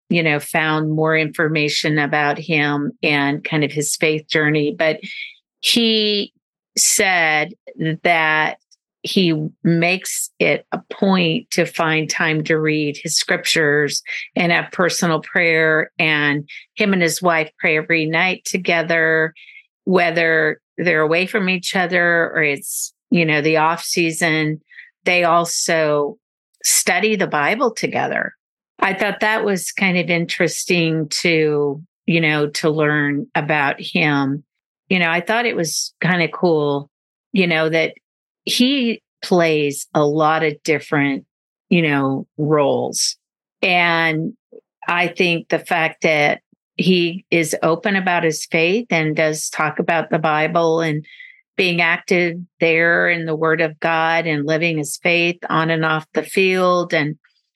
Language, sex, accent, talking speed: English, female, American, 140 wpm